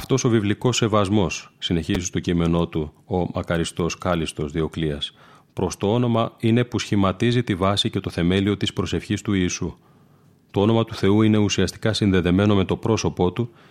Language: Greek